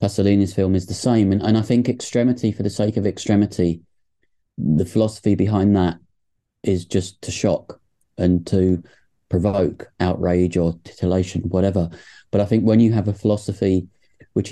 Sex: male